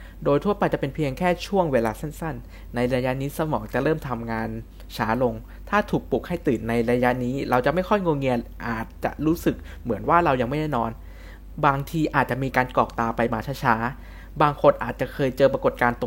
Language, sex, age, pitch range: Thai, male, 20-39, 115-155 Hz